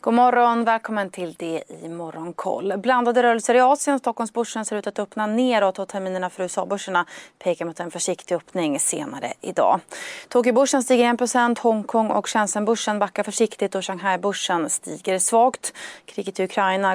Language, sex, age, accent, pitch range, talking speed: Swedish, female, 30-49, native, 180-220 Hz, 160 wpm